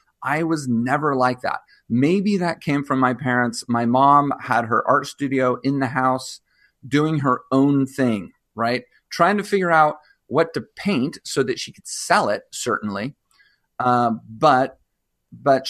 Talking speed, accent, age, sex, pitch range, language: 160 wpm, American, 30-49, male, 120-150 Hz, English